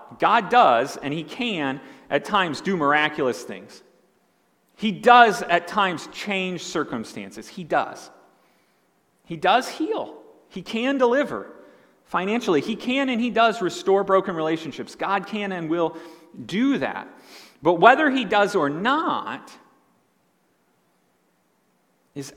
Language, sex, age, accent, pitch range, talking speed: English, male, 40-59, American, 145-215 Hz, 125 wpm